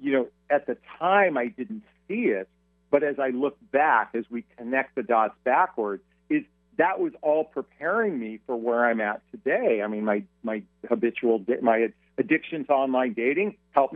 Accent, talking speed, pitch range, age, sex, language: American, 180 wpm, 110-155 Hz, 50-69, male, English